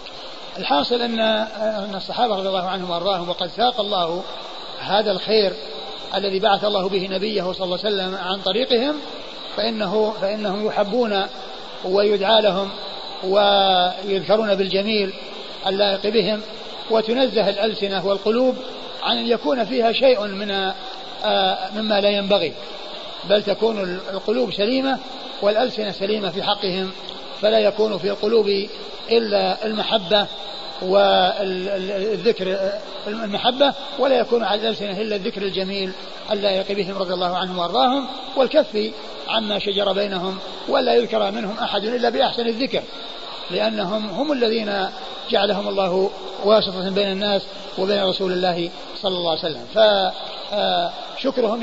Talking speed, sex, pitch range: 115 wpm, male, 195-220 Hz